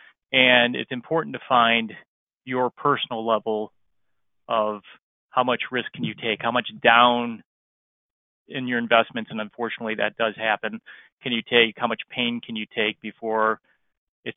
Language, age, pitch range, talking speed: English, 30-49, 110-140 Hz, 155 wpm